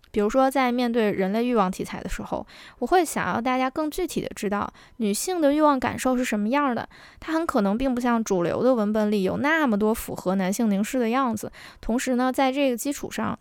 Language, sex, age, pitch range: Chinese, female, 10-29, 210-275 Hz